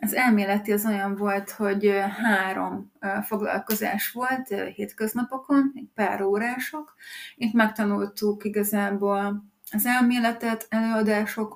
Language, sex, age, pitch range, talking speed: Hungarian, female, 30-49, 200-225 Hz, 100 wpm